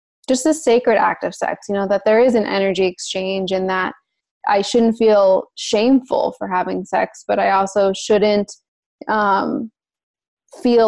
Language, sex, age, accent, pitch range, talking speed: English, female, 20-39, American, 190-235 Hz, 160 wpm